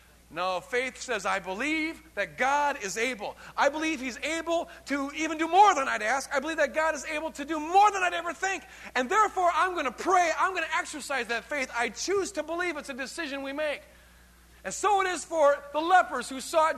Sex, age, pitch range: male, 40-59, 200-310 Hz